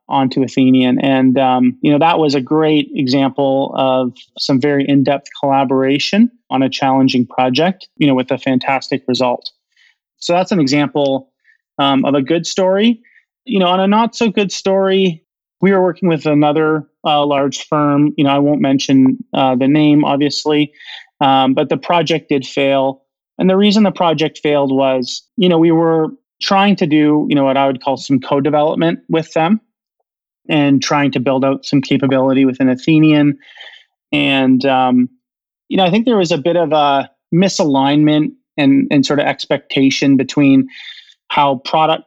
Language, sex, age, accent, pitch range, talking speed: English, male, 30-49, American, 135-165 Hz, 175 wpm